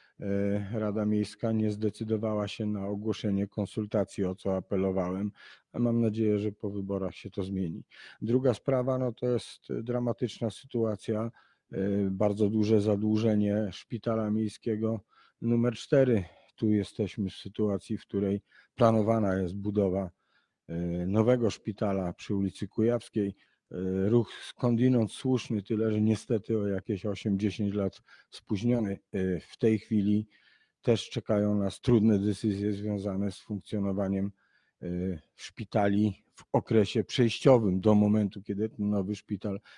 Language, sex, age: Polish, male, 50-69